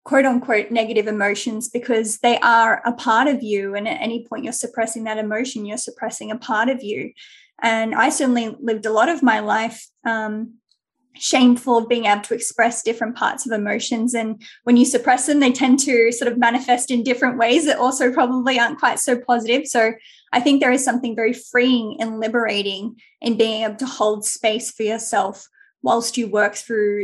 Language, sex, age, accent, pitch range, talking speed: English, female, 20-39, Australian, 220-255 Hz, 195 wpm